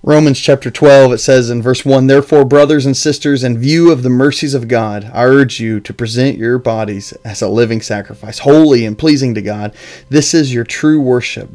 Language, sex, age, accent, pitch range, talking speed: English, male, 30-49, American, 115-145 Hz, 210 wpm